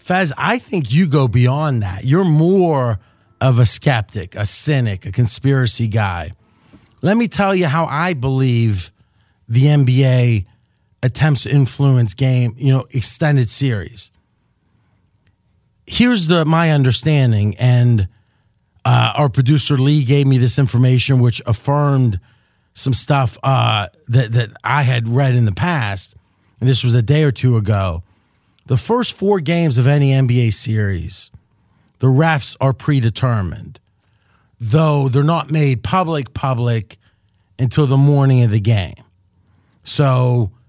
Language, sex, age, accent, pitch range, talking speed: English, male, 30-49, American, 110-145 Hz, 135 wpm